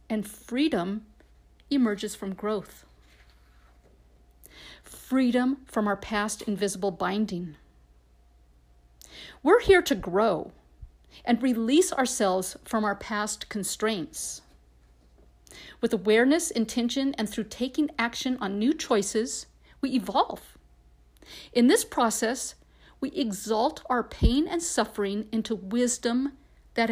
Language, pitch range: English, 165-260 Hz